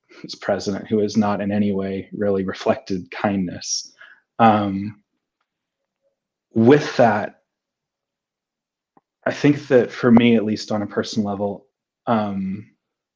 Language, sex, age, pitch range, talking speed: English, male, 30-49, 100-125 Hz, 120 wpm